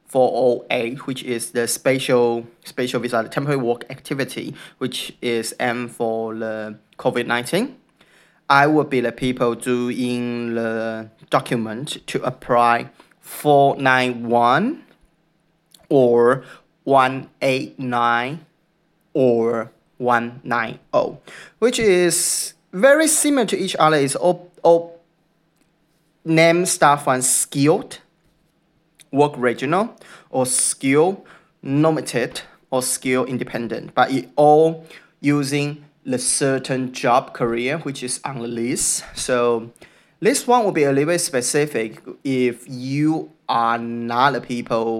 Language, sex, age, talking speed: English, male, 20-39, 120 wpm